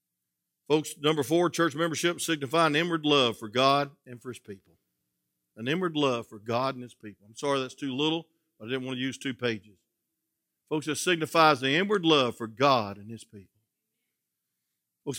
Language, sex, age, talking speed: English, male, 50-69, 190 wpm